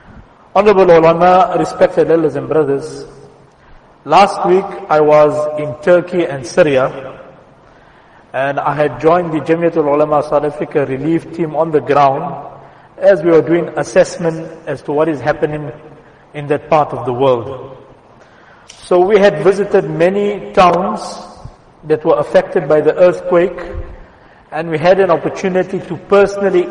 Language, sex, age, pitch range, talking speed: English, male, 50-69, 155-195 Hz, 140 wpm